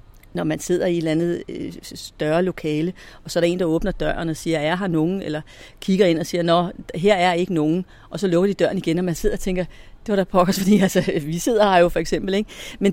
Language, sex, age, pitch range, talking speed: Danish, female, 40-59, 165-210 Hz, 265 wpm